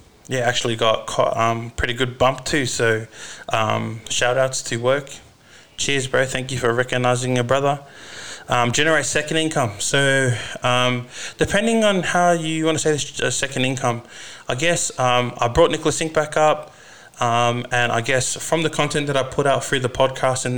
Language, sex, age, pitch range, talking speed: English, male, 20-39, 120-135 Hz, 180 wpm